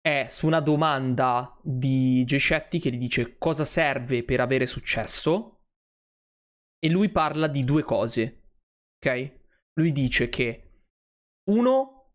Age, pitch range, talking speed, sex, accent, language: 20-39, 125-165 Hz, 125 wpm, male, native, Italian